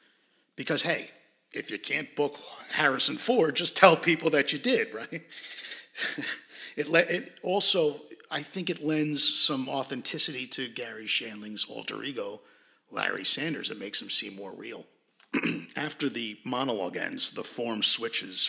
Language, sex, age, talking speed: English, male, 50-69, 145 wpm